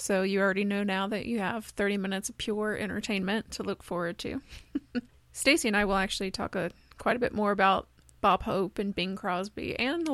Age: 30-49